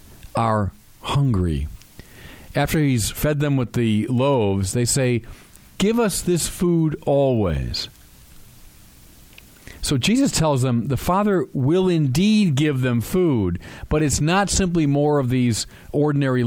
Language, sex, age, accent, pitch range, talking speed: English, male, 40-59, American, 110-155 Hz, 130 wpm